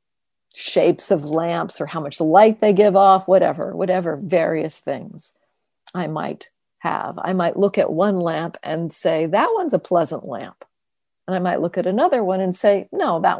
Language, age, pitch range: English, 50-69, 165-200 Hz